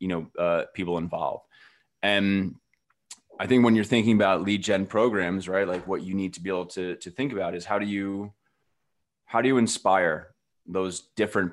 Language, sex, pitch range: English, male, 90-100 Hz